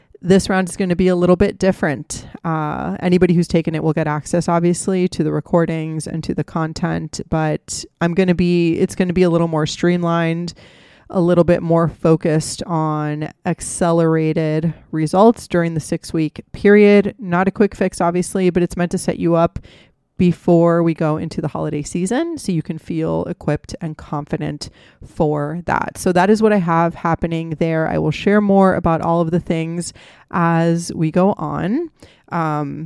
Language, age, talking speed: English, 30-49, 185 wpm